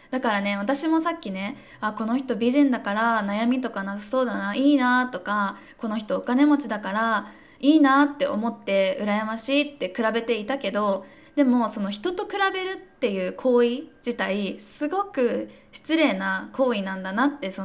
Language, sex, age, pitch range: Japanese, female, 20-39, 200-275 Hz